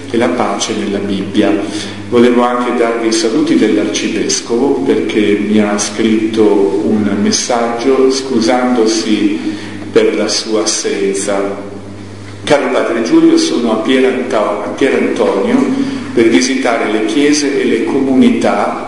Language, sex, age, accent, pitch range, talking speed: Italian, male, 50-69, native, 105-130 Hz, 120 wpm